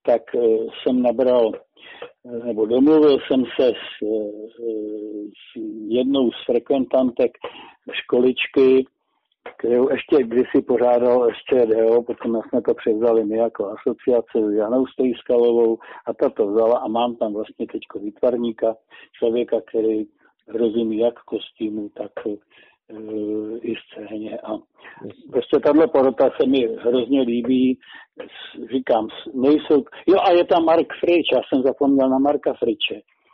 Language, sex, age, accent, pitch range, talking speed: Czech, male, 50-69, native, 115-140 Hz, 125 wpm